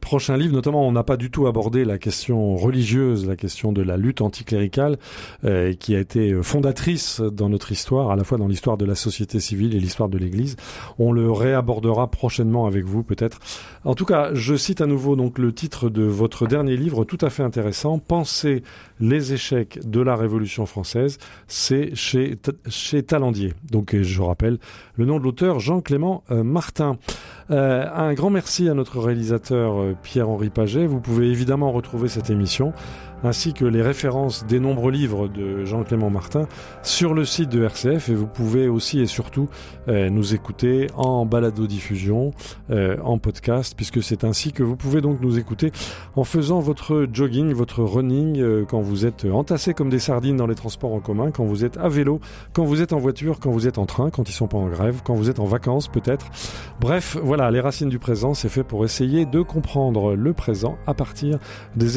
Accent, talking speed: French, 200 wpm